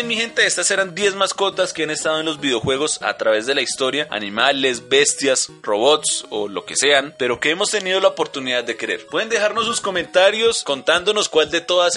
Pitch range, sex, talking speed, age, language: 150-205 Hz, male, 200 wpm, 20-39, Spanish